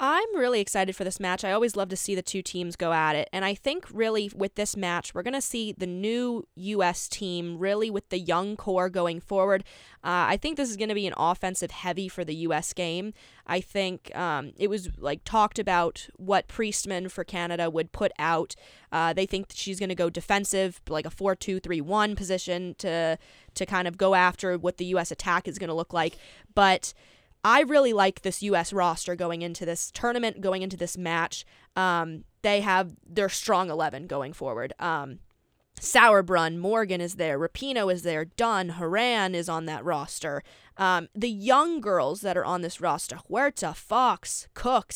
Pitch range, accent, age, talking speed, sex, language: 175-205 Hz, American, 20-39, 195 wpm, female, English